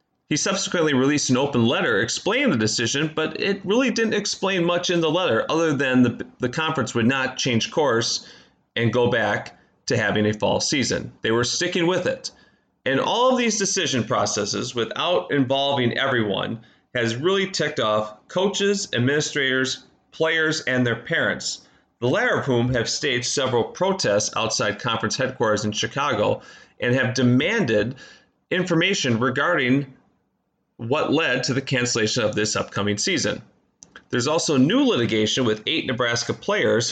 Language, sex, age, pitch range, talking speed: English, male, 30-49, 115-160 Hz, 155 wpm